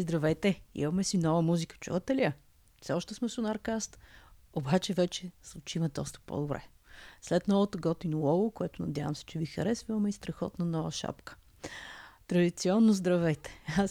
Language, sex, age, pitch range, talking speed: Bulgarian, female, 30-49, 160-210 Hz, 145 wpm